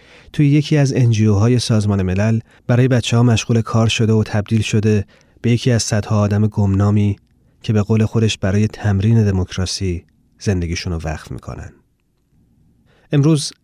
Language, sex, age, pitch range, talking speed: Persian, male, 30-49, 105-125 Hz, 150 wpm